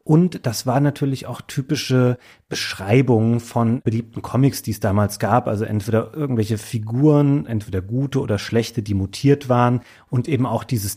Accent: German